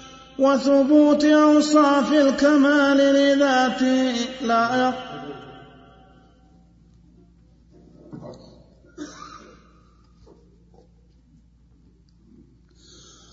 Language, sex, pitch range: Arabic, male, 255-280 Hz